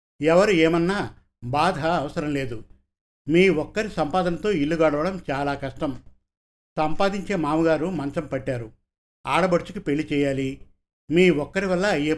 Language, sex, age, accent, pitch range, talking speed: Telugu, male, 50-69, native, 140-175 Hz, 110 wpm